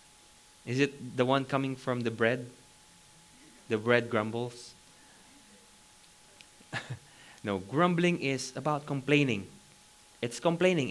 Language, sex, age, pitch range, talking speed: English, male, 20-39, 120-155 Hz, 100 wpm